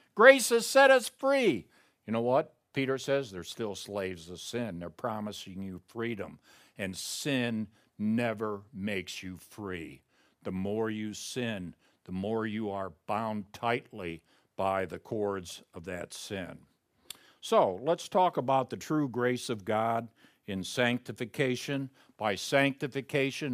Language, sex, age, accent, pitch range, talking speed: English, male, 60-79, American, 110-160 Hz, 140 wpm